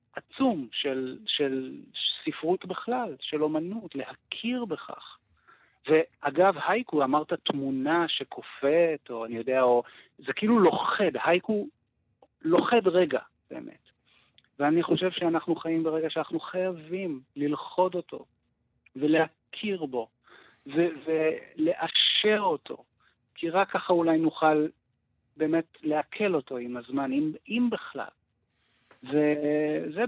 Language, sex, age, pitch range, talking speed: Hebrew, male, 50-69, 135-180 Hz, 105 wpm